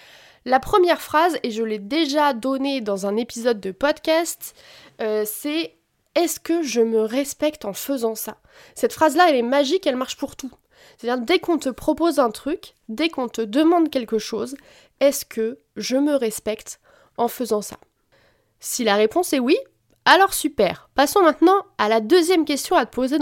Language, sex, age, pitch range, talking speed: French, female, 20-39, 230-305 Hz, 180 wpm